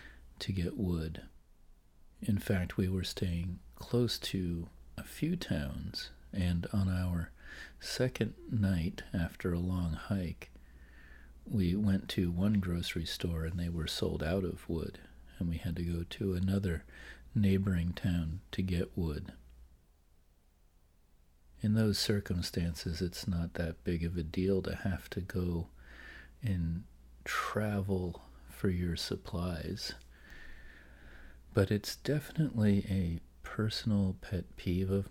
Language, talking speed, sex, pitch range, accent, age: English, 125 wpm, male, 80-100 Hz, American, 40-59